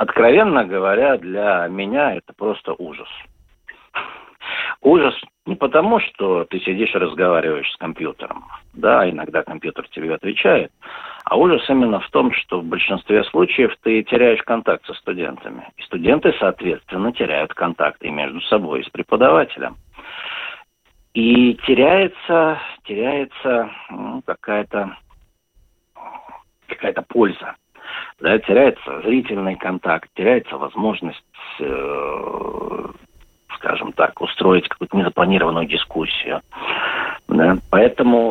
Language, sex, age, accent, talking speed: Russian, male, 50-69, native, 105 wpm